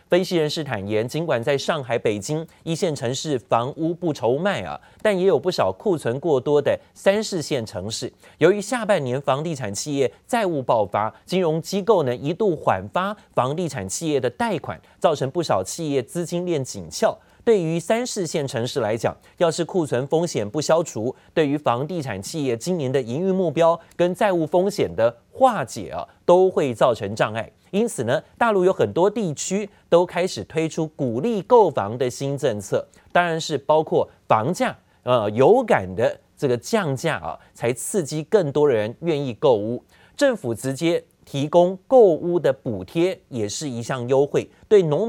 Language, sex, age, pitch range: Chinese, male, 30-49, 125-180 Hz